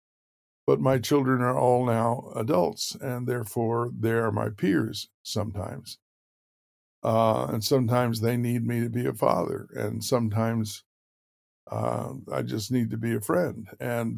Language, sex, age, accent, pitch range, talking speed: English, male, 60-79, American, 105-130 Hz, 145 wpm